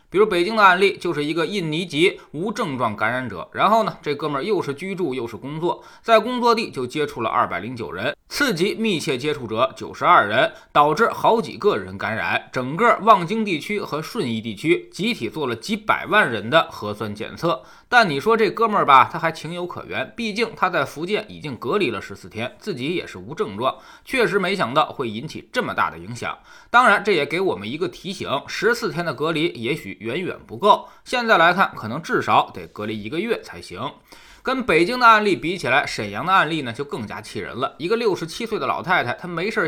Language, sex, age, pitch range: Chinese, male, 20-39, 160-230 Hz